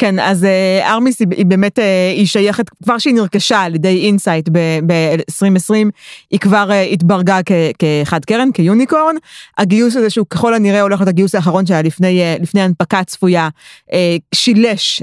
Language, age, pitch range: Hebrew, 30-49, 180-225 Hz